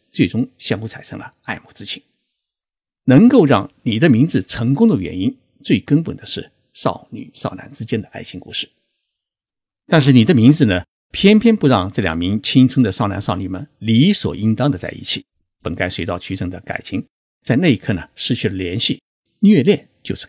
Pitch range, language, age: 95-140 Hz, Chinese, 50-69